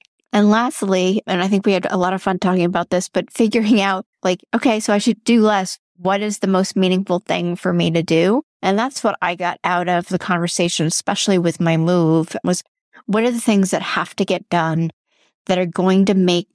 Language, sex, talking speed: English, female, 225 wpm